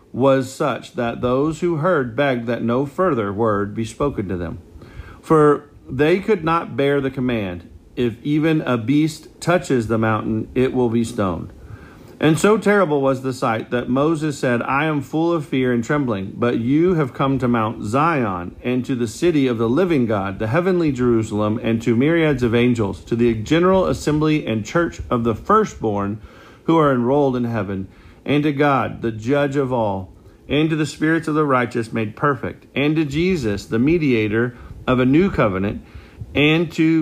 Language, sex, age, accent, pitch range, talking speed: English, male, 40-59, American, 110-150 Hz, 185 wpm